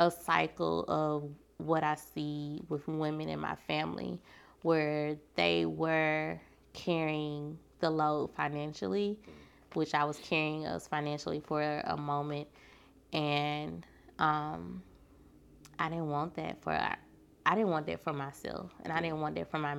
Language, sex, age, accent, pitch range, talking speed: English, female, 20-39, American, 145-160 Hz, 145 wpm